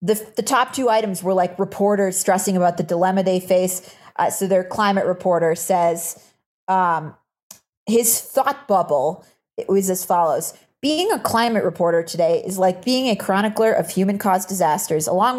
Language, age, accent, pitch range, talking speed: English, 30-49, American, 180-225 Hz, 170 wpm